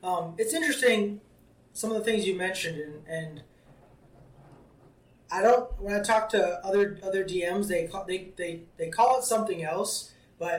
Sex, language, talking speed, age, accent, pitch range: male, English, 170 wpm, 20-39, American, 165-210 Hz